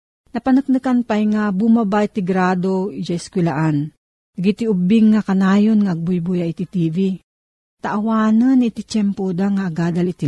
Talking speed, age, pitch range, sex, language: 125 wpm, 50-69, 170-215 Hz, female, Filipino